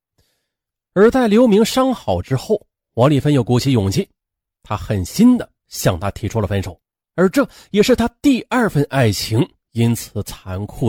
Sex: male